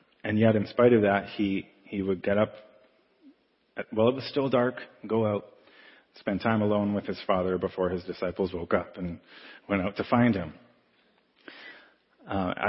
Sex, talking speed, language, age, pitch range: male, 170 wpm, English, 30-49, 95-115 Hz